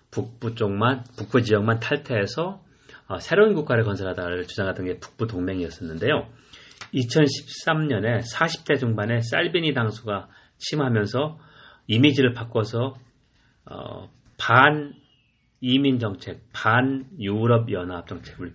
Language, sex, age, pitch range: Korean, male, 40-59, 100-130 Hz